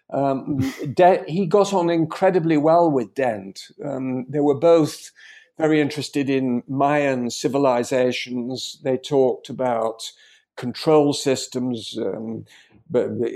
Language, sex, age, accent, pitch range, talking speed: English, male, 50-69, British, 125-155 Hz, 110 wpm